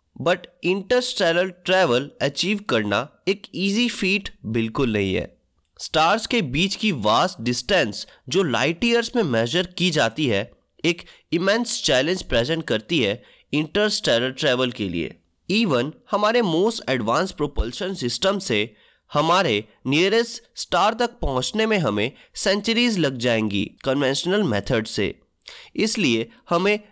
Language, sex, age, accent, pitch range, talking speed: Hindi, male, 20-39, native, 125-210 Hz, 130 wpm